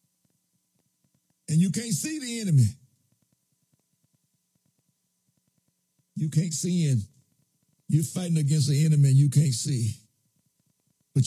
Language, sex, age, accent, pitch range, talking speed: English, male, 60-79, American, 150-200 Hz, 105 wpm